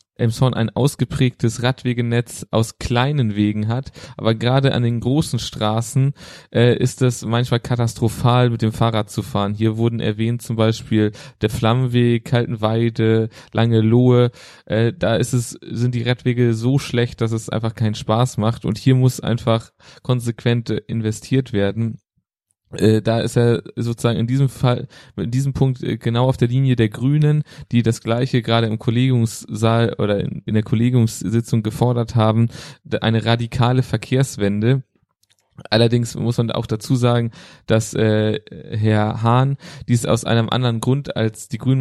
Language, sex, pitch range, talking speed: German, male, 110-125 Hz, 150 wpm